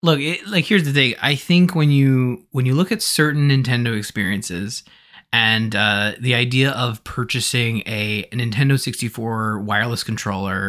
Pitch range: 105-130 Hz